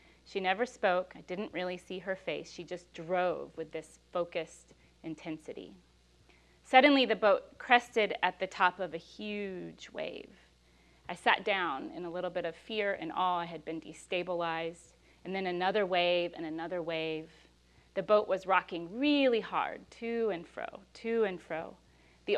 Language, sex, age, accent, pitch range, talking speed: English, female, 30-49, American, 165-215 Hz, 165 wpm